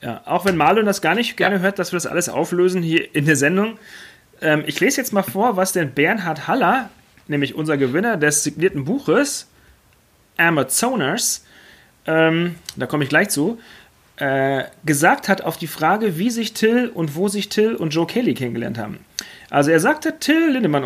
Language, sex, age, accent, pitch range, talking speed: German, male, 40-59, German, 140-195 Hz, 180 wpm